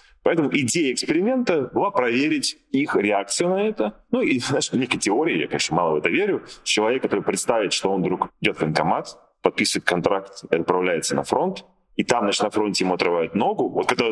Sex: male